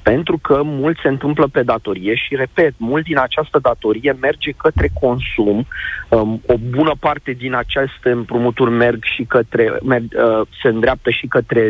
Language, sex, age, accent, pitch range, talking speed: Romanian, male, 40-59, native, 115-140 Hz, 135 wpm